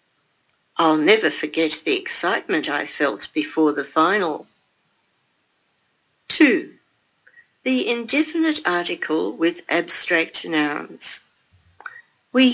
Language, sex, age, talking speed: English, female, 60-79, 85 wpm